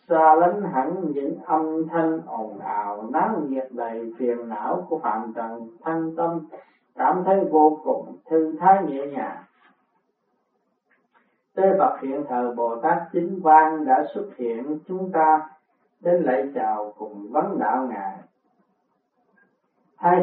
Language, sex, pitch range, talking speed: Vietnamese, male, 140-170 Hz, 135 wpm